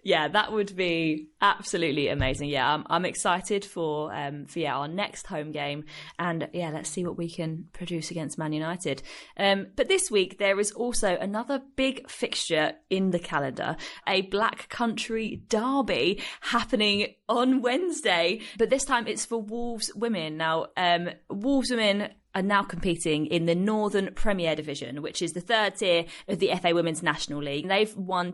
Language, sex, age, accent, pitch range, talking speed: English, female, 20-39, British, 155-210 Hz, 170 wpm